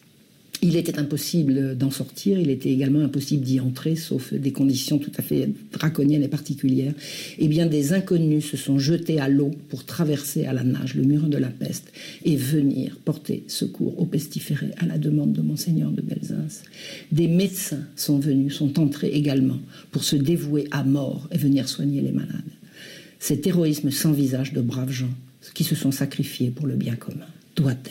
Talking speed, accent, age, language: 185 wpm, French, 60-79, French